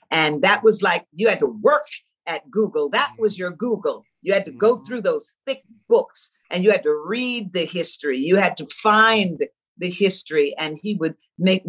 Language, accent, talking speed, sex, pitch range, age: English, American, 200 wpm, female, 200-245 Hz, 50-69